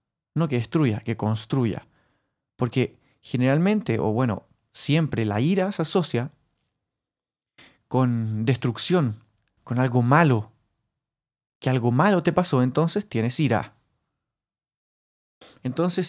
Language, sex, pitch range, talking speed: Spanish, male, 115-155 Hz, 105 wpm